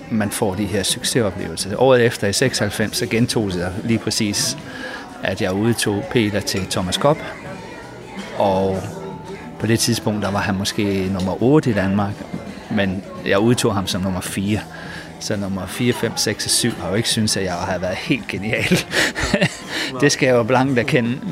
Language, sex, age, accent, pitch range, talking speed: Danish, male, 40-59, native, 100-120 Hz, 175 wpm